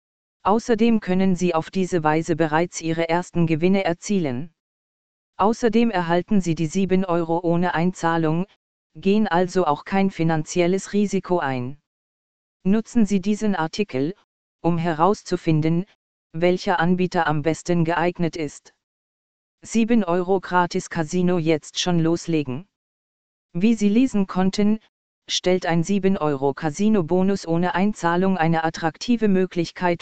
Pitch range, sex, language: 165-195 Hz, female, German